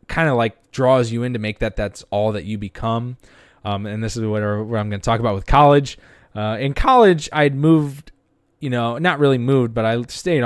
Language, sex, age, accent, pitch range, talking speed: English, male, 20-39, American, 110-145 Hz, 235 wpm